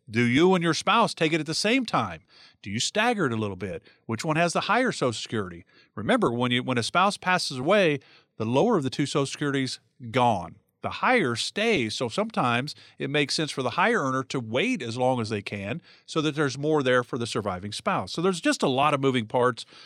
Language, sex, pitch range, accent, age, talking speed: English, male, 115-170 Hz, American, 50-69, 235 wpm